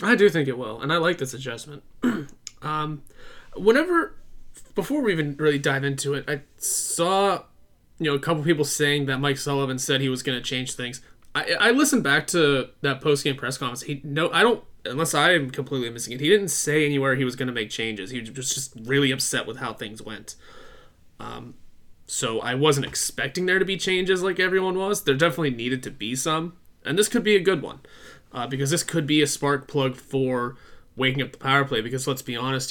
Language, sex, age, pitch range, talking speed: English, male, 20-39, 125-155 Hz, 220 wpm